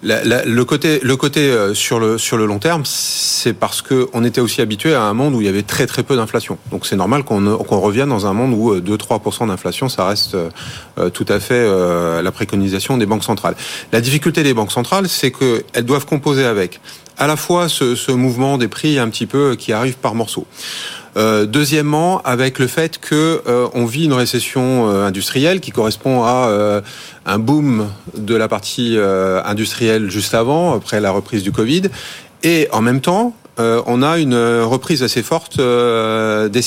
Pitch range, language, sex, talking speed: 110-140 Hz, French, male, 190 wpm